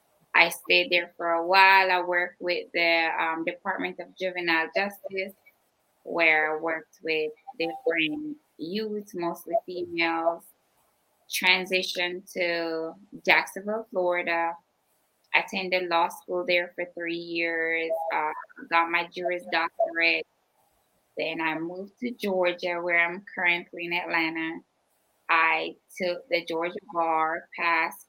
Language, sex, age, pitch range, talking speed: English, female, 20-39, 165-185 Hz, 115 wpm